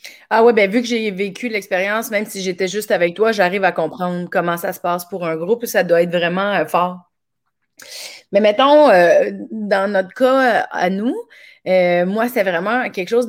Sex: female